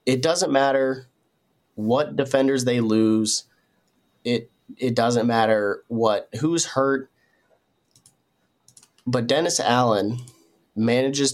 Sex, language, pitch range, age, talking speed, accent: male, English, 110-125 Hz, 20-39, 95 wpm, American